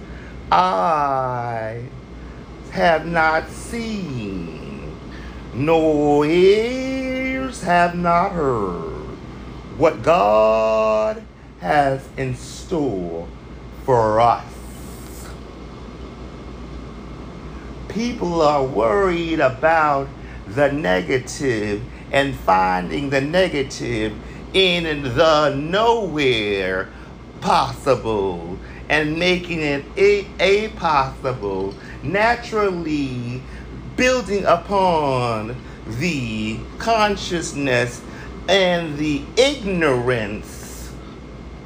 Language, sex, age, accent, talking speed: English, male, 50-69, American, 65 wpm